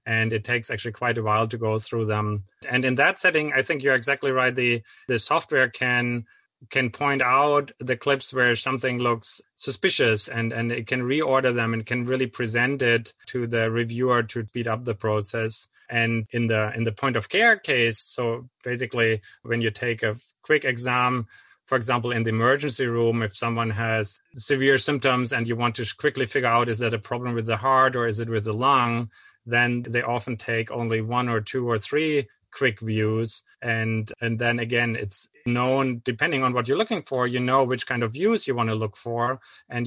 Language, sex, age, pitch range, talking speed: English, male, 30-49, 115-130 Hz, 205 wpm